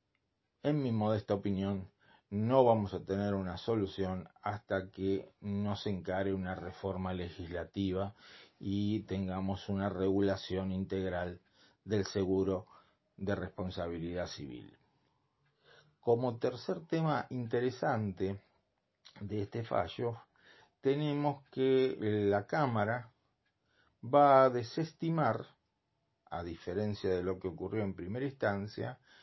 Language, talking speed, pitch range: Spanish, 105 wpm, 95-120 Hz